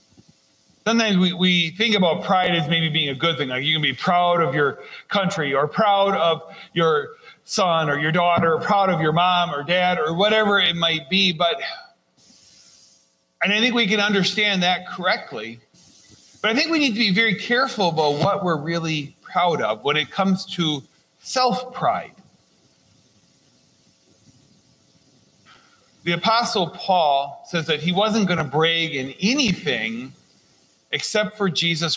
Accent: American